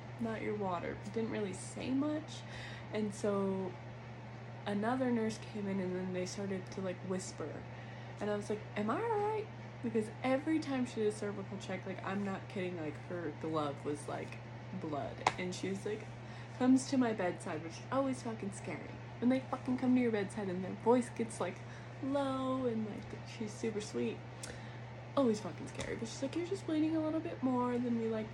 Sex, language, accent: female, English, American